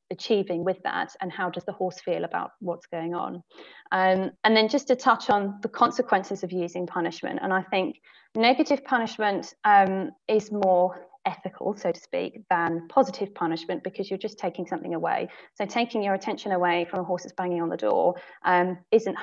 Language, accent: English, British